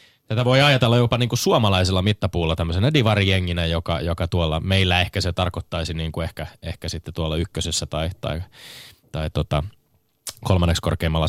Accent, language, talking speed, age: native, Finnish, 160 wpm, 20-39